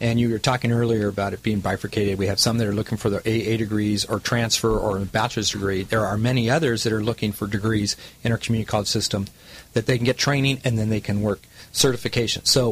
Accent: American